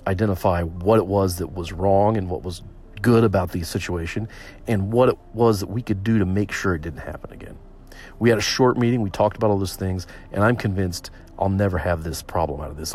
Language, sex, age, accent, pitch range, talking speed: English, male, 40-59, American, 90-110 Hz, 235 wpm